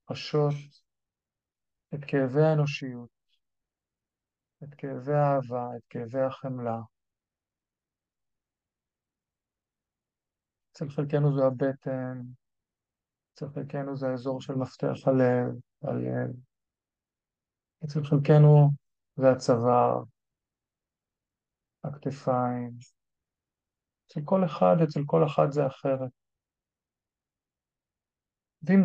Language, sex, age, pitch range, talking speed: Hebrew, male, 50-69, 120-145 Hz, 75 wpm